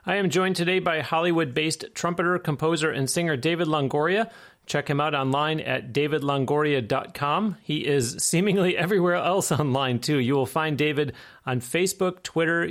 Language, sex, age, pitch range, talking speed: English, male, 30-49, 130-160 Hz, 150 wpm